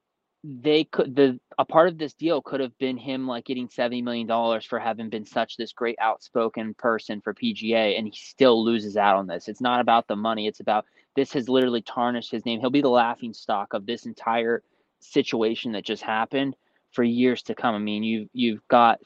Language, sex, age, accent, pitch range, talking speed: English, male, 20-39, American, 110-130 Hz, 215 wpm